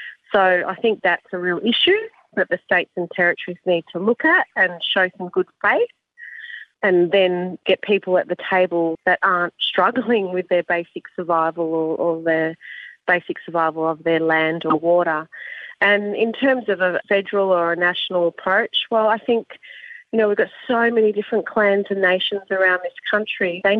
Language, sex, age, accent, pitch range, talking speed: English, female, 30-49, Australian, 175-215 Hz, 180 wpm